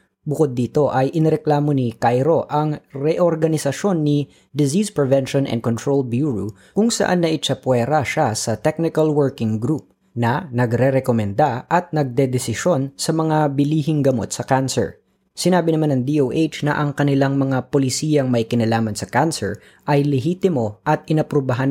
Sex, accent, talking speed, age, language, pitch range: female, native, 140 wpm, 20-39, Filipino, 125-155 Hz